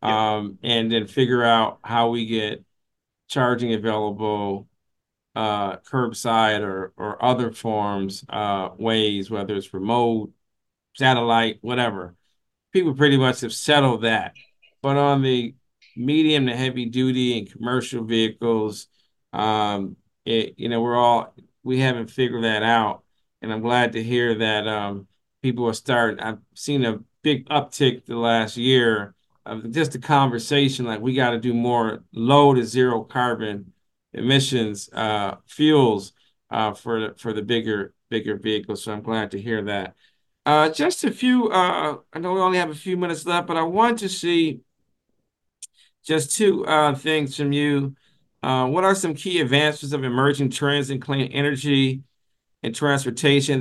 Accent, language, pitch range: American, English, 110-140 Hz